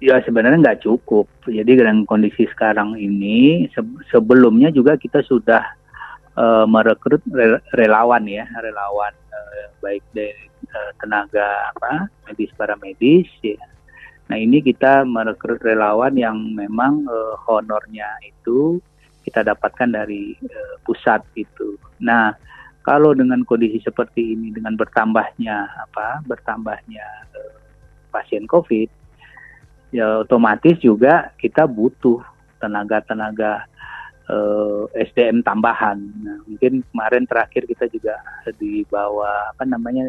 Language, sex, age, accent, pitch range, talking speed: Indonesian, male, 30-49, native, 105-120 Hz, 115 wpm